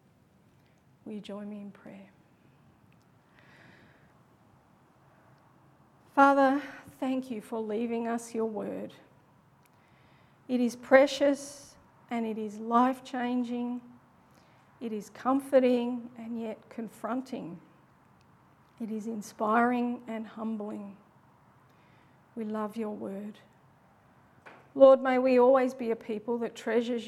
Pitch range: 215-245 Hz